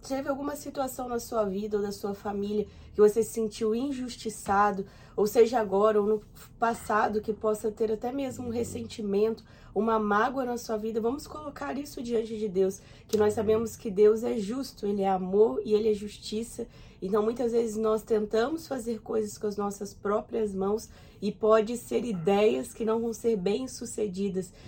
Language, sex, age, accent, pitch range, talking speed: Portuguese, female, 20-39, Brazilian, 205-230 Hz, 180 wpm